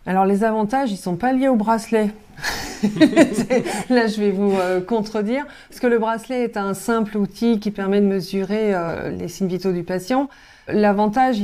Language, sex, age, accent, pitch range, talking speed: French, female, 40-59, French, 180-220 Hz, 180 wpm